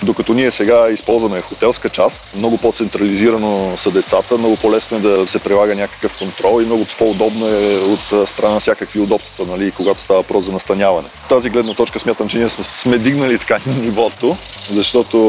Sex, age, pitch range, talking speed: male, 20-39, 100-115 Hz, 180 wpm